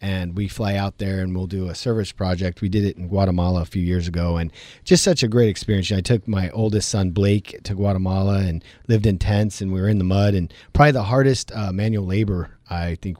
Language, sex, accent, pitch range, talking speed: English, male, American, 95-115 Hz, 240 wpm